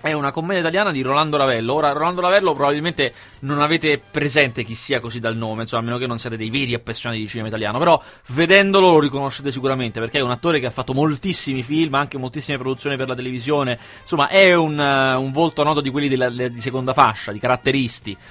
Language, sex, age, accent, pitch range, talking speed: Italian, male, 20-39, native, 115-145 Hz, 215 wpm